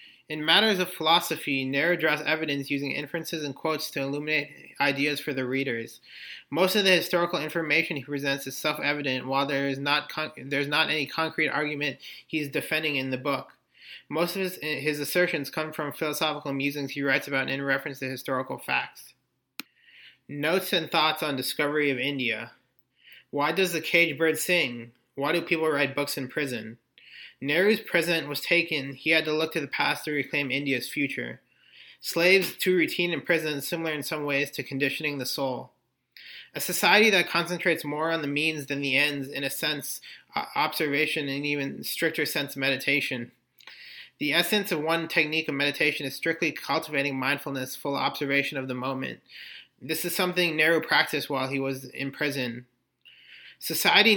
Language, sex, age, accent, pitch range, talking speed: English, male, 30-49, American, 140-165 Hz, 170 wpm